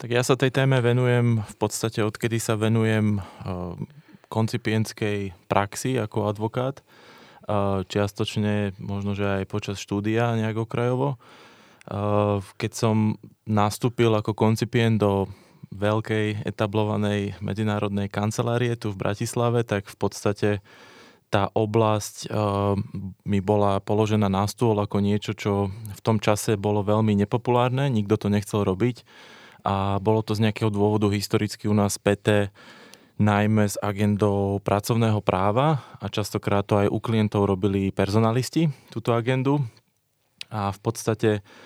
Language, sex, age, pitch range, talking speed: Slovak, male, 20-39, 100-115 Hz, 125 wpm